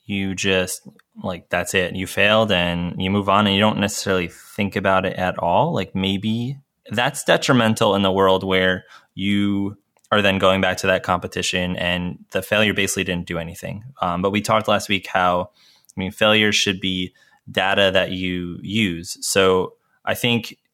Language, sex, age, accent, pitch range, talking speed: English, male, 20-39, American, 95-105 Hz, 180 wpm